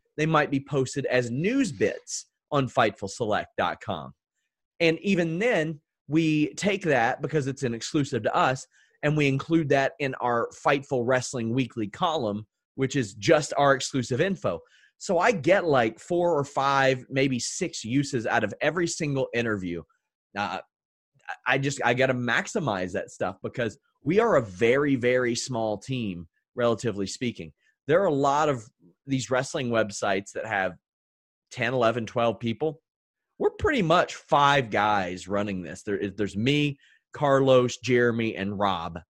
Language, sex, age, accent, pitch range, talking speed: English, male, 30-49, American, 115-150 Hz, 150 wpm